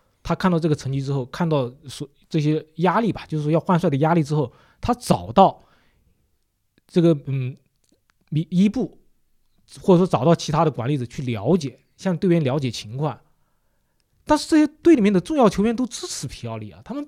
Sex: male